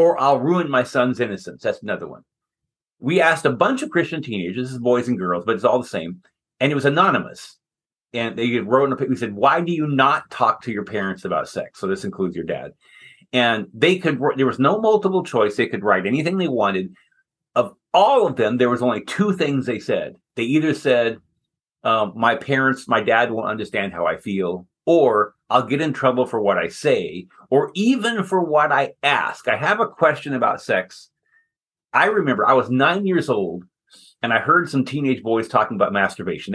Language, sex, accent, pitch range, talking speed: English, male, American, 120-170 Hz, 205 wpm